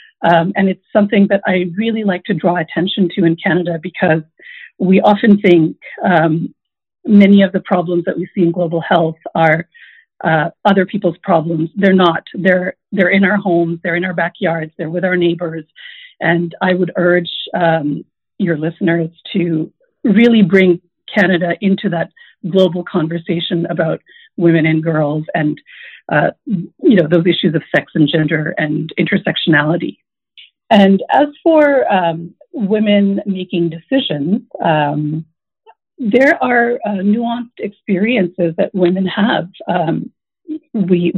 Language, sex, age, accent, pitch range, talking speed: English, female, 50-69, American, 170-205 Hz, 145 wpm